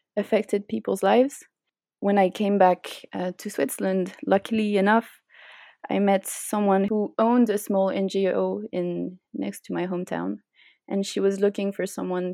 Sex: female